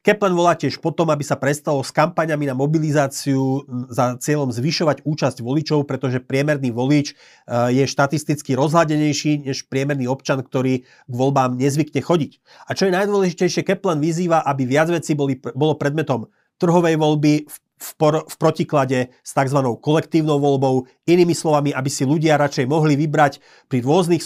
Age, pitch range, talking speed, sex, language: 30-49, 135-160 Hz, 155 wpm, male, Slovak